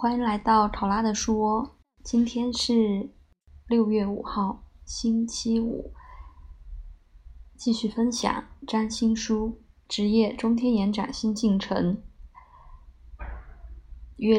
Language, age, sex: Chinese, 20-39, female